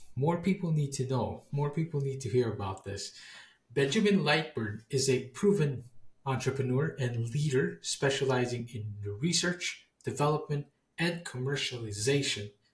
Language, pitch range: English, 115-145 Hz